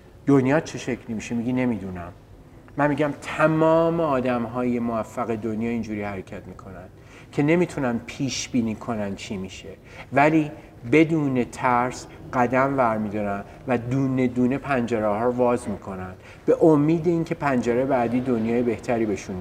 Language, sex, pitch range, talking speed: Persian, male, 110-135 Hz, 140 wpm